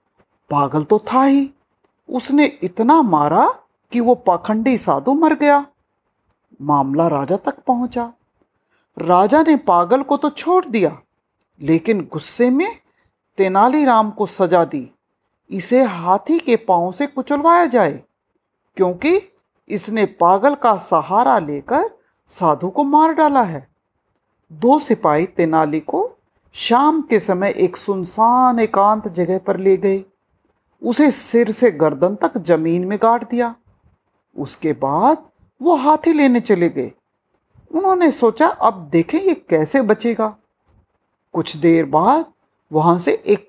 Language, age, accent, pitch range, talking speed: Hindi, 60-79, native, 180-285 Hz, 125 wpm